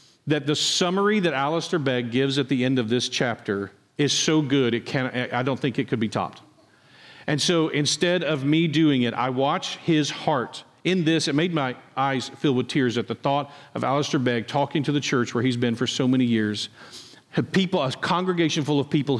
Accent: American